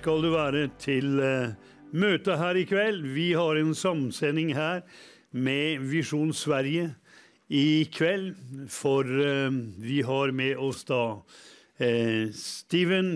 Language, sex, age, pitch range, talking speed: English, male, 60-79, 130-160 Hz, 130 wpm